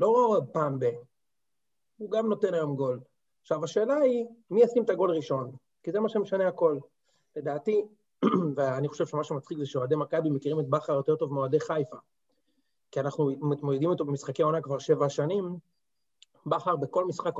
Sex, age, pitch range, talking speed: male, 30-49, 140-175 Hz, 160 wpm